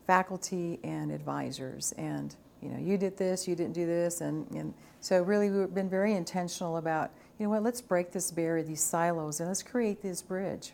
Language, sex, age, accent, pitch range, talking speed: English, female, 50-69, American, 160-185 Hz, 200 wpm